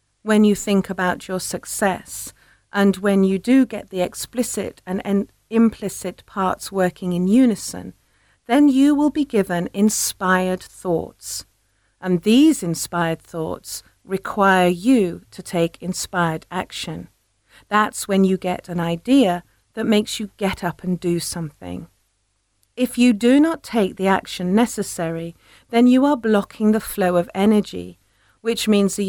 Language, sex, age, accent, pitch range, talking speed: English, female, 40-59, British, 170-220 Hz, 140 wpm